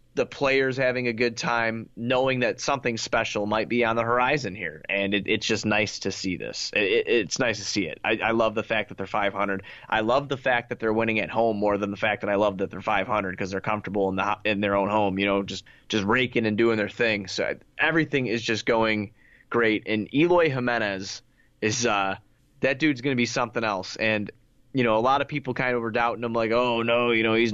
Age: 20-39